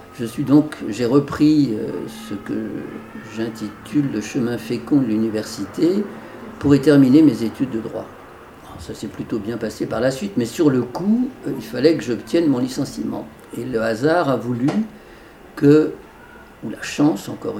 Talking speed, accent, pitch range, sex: 165 wpm, French, 110-145 Hz, male